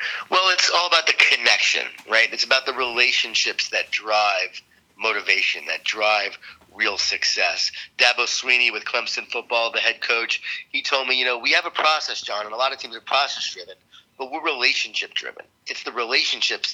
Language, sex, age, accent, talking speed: English, male, 30-49, American, 180 wpm